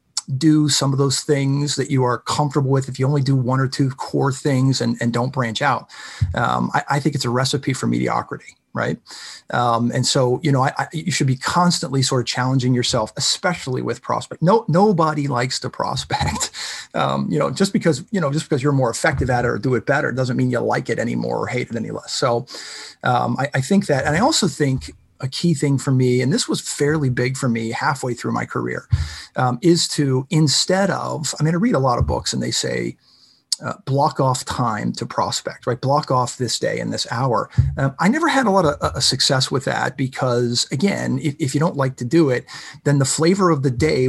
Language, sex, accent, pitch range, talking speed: English, male, American, 125-155 Hz, 230 wpm